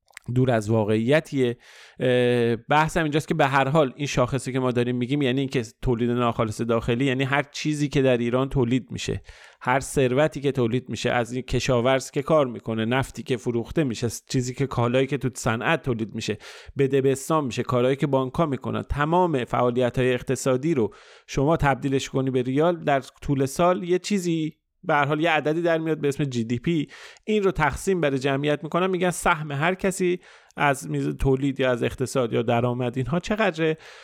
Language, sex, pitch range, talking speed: Persian, male, 120-155 Hz, 185 wpm